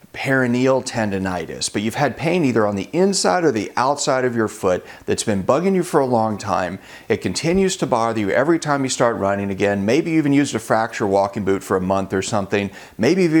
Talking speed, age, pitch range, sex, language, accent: 225 wpm, 40-59, 105-145 Hz, male, English, American